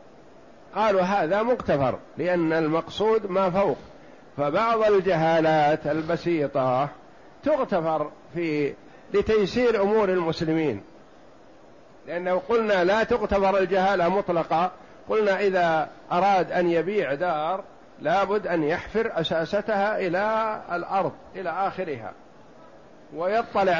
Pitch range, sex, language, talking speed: 160-215 Hz, male, Arabic, 90 wpm